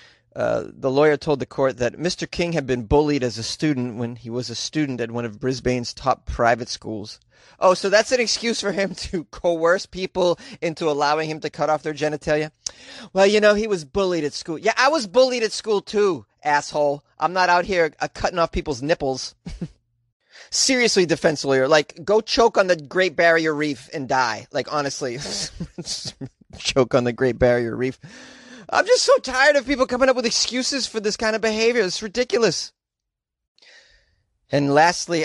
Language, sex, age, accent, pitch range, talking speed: English, male, 30-49, American, 135-200 Hz, 185 wpm